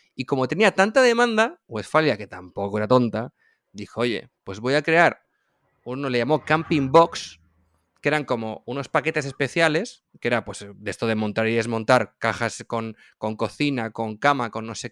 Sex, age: male, 20-39